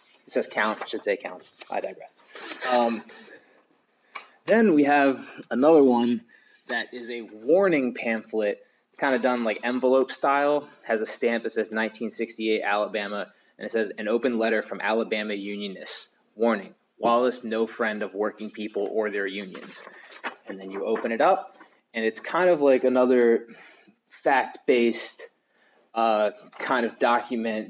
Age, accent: 20-39, American